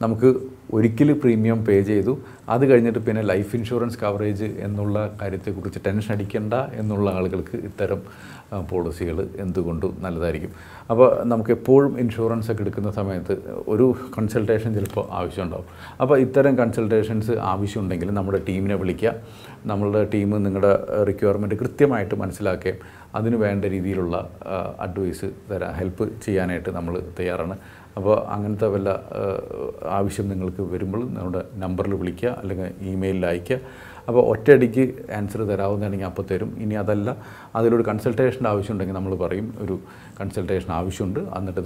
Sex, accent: male, native